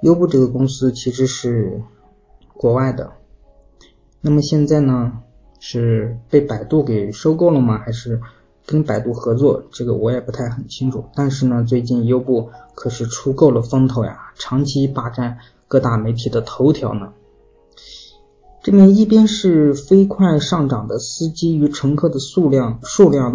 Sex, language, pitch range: male, Chinese, 115-145 Hz